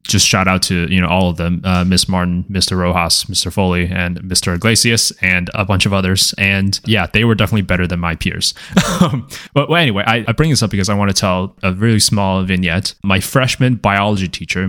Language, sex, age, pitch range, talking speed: English, male, 20-39, 90-115 Hz, 215 wpm